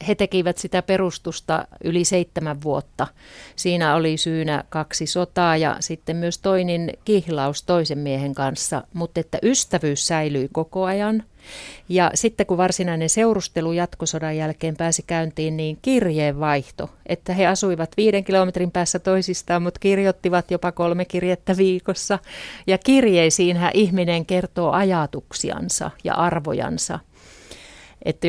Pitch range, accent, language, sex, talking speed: 160-185 Hz, native, Finnish, female, 125 wpm